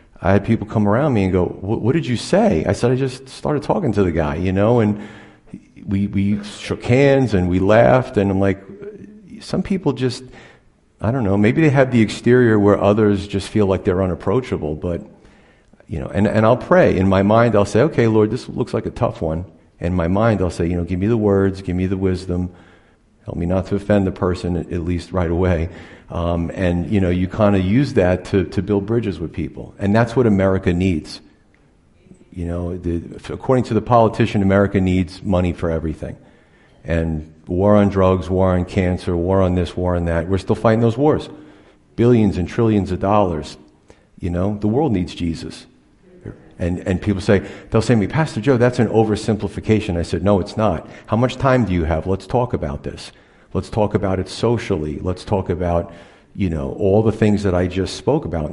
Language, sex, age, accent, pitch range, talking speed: English, male, 50-69, American, 90-110 Hz, 210 wpm